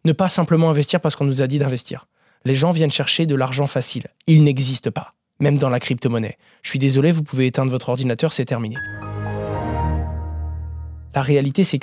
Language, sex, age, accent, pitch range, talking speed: French, male, 20-39, French, 130-155 Hz, 190 wpm